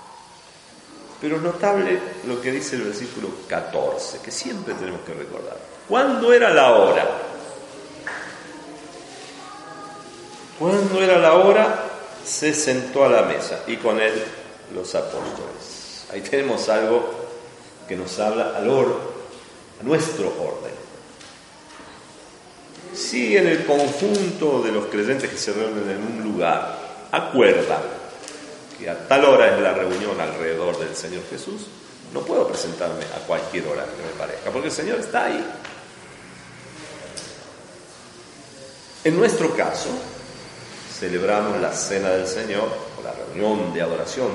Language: Spanish